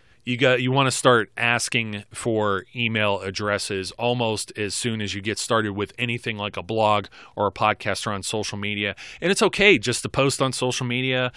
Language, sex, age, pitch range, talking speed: English, male, 30-49, 110-130 Hz, 190 wpm